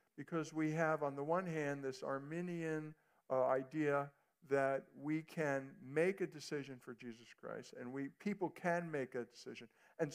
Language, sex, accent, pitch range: English, male, American, 130-175 Hz